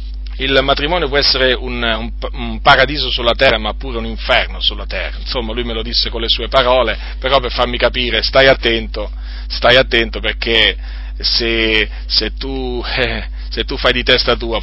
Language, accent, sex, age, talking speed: Italian, native, male, 40-59, 175 wpm